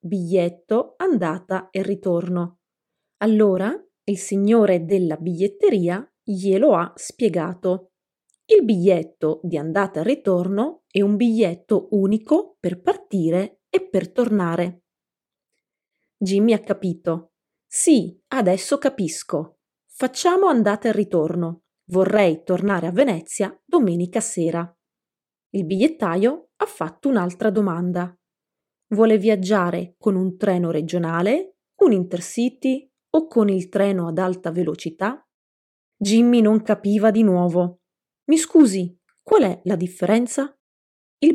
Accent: Italian